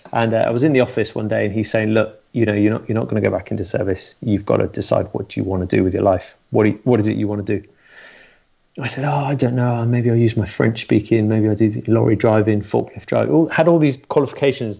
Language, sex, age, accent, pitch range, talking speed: English, male, 30-49, British, 110-135 Hz, 290 wpm